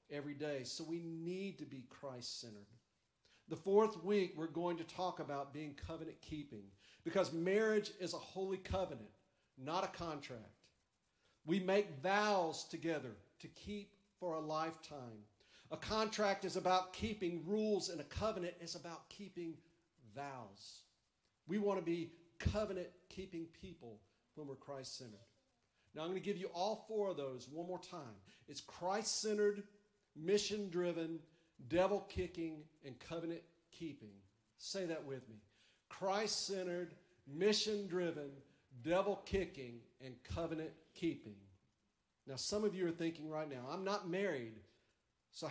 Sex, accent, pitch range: male, American, 140-185 Hz